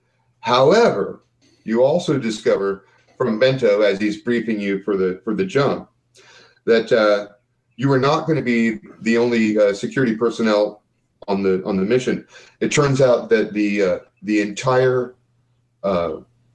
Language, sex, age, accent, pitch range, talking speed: English, male, 40-59, American, 105-130 Hz, 150 wpm